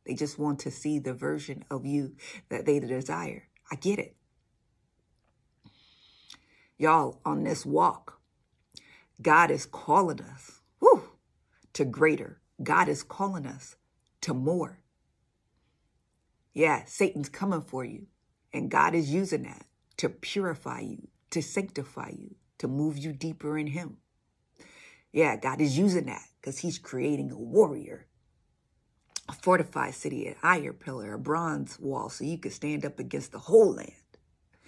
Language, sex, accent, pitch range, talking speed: English, female, American, 135-165 Hz, 140 wpm